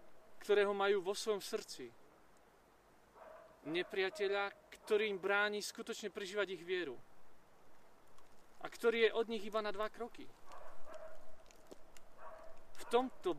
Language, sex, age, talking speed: Slovak, male, 40-59, 110 wpm